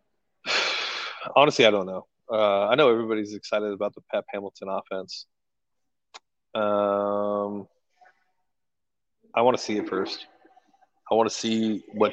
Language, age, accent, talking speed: English, 30-49, American, 130 wpm